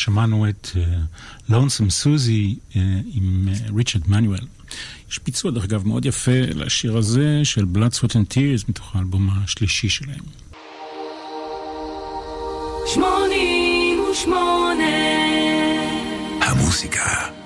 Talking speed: 85 wpm